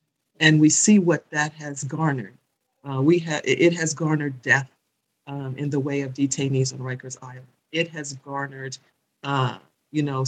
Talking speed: 170 wpm